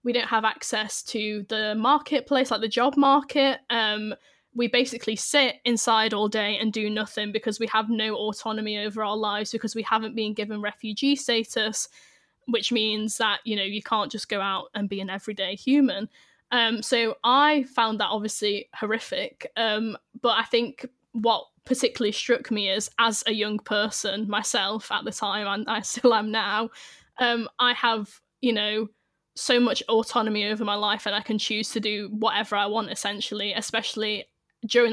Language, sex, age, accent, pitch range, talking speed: English, female, 10-29, British, 215-245 Hz, 175 wpm